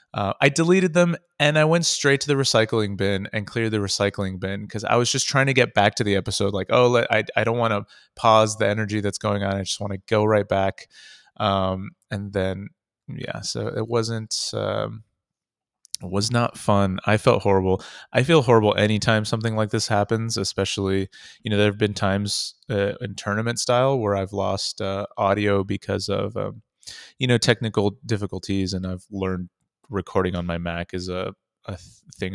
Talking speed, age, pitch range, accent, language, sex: 195 wpm, 30-49, 100-115 Hz, American, English, male